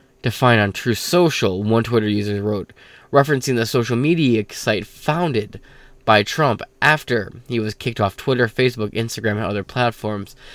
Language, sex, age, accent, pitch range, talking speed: English, male, 10-29, American, 110-135 Hz, 155 wpm